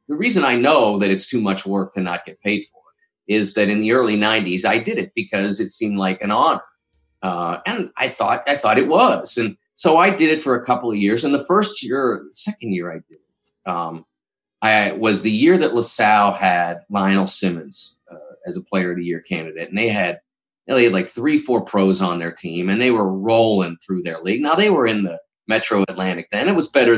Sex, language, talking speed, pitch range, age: male, English, 235 wpm, 95-125 Hz, 30-49